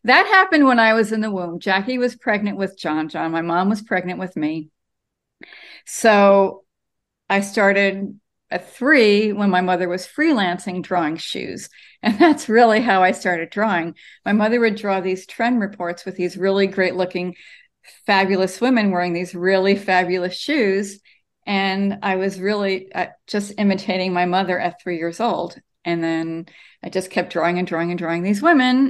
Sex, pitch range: female, 180-215 Hz